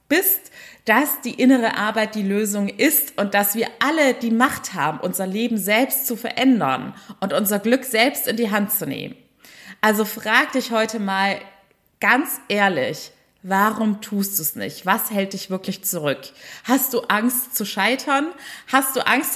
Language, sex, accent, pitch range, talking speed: German, female, German, 200-250 Hz, 165 wpm